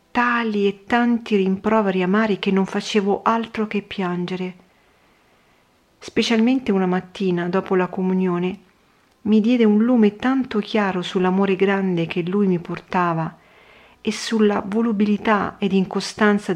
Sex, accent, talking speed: female, native, 125 wpm